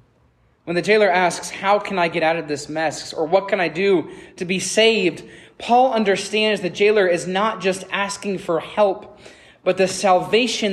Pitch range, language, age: 170-215 Hz, English, 20-39